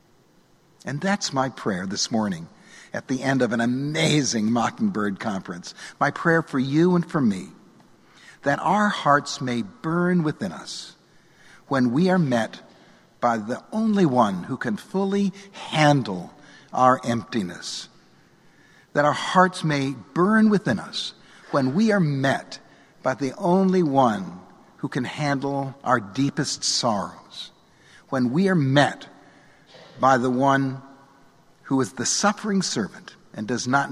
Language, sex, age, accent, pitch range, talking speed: English, male, 60-79, American, 130-180 Hz, 140 wpm